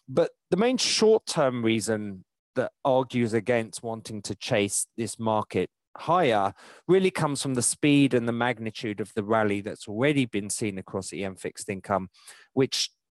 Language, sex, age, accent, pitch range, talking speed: English, male, 30-49, British, 95-130 Hz, 155 wpm